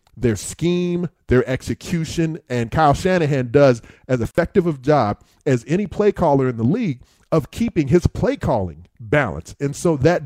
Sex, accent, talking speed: male, American, 165 wpm